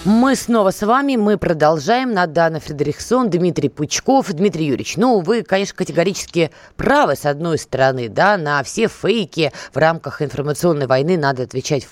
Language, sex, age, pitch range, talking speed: Russian, female, 20-39, 150-225 Hz, 150 wpm